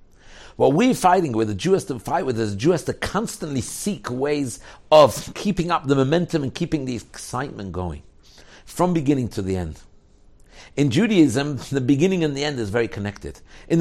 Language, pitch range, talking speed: English, 125-185 Hz, 185 wpm